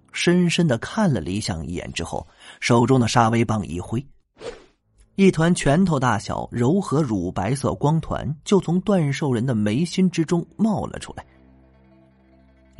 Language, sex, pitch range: Chinese, male, 95-145 Hz